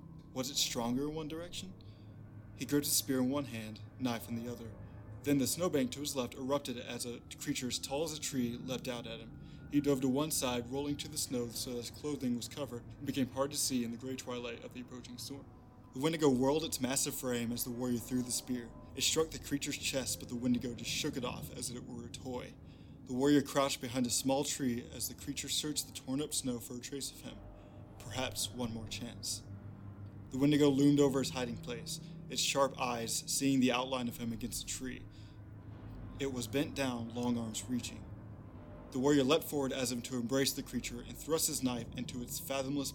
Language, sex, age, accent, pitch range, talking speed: English, male, 20-39, American, 120-140 Hz, 225 wpm